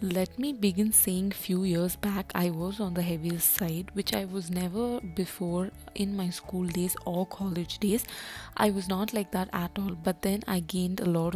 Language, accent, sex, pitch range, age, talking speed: Tamil, native, female, 175-195 Hz, 20-39, 200 wpm